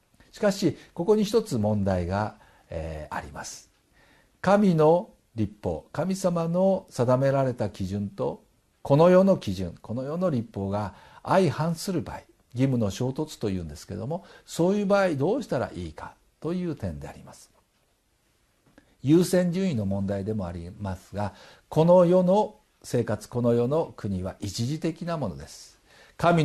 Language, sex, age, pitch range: Japanese, male, 60-79, 100-160 Hz